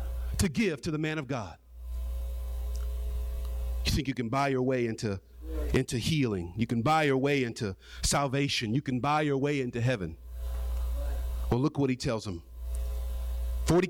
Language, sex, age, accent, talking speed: English, male, 40-59, American, 165 wpm